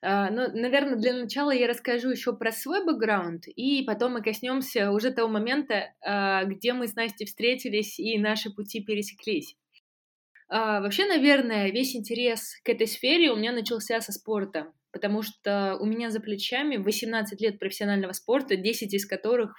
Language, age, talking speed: Russian, 20-39, 170 wpm